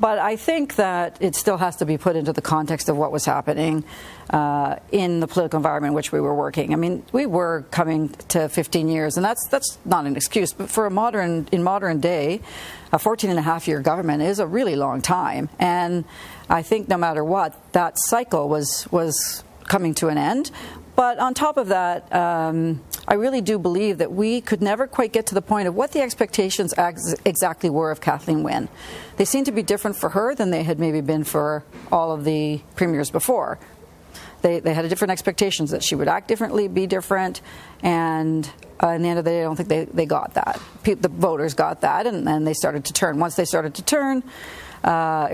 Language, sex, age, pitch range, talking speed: English, female, 50-69, 155-200 Hz, 220 wpm